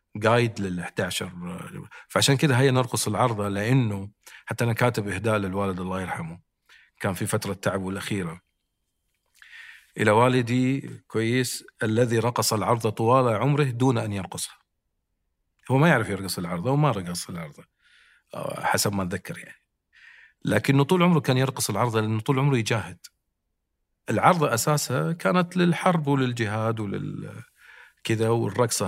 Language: Arabic